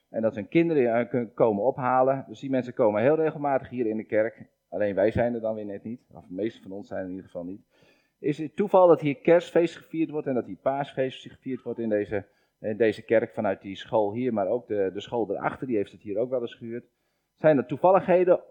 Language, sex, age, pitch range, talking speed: Dutch, male, 40-59, 110-155 Hz, 245 wpm